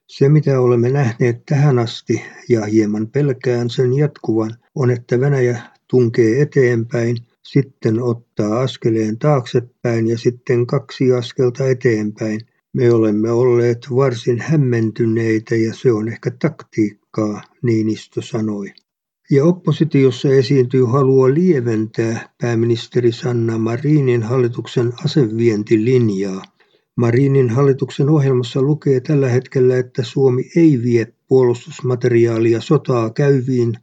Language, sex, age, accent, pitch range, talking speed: Finnish, male, 60-79, native, 115-135 Hz, 110 wpm